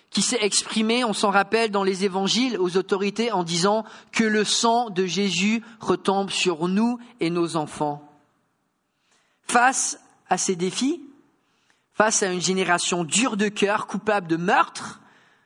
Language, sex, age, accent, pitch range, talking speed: English, male, 40-59, French, 185-245 Hz, 150 wpm